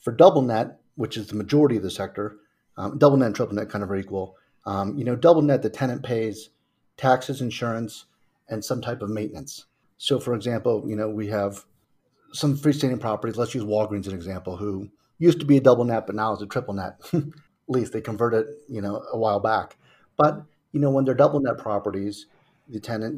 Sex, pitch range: male, 105-130 Hz